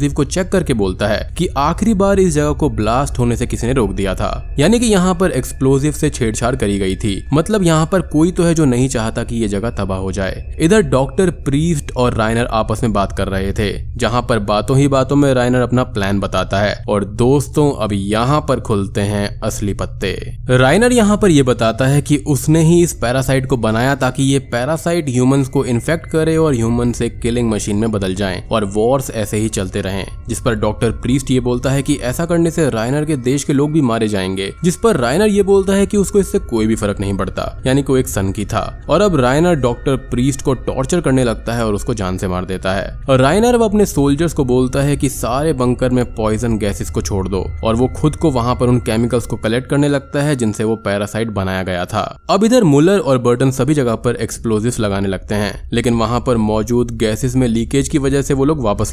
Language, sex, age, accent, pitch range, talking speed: Hindi, male, 20-39, native, 110-145 Hz, 225 wpm